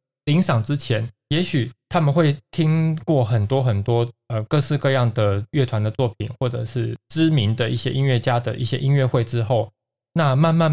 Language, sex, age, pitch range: Chinese, male, 20-39, 115-140 Hz